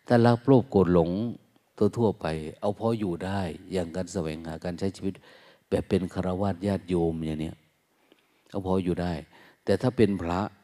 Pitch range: 85-105 Hz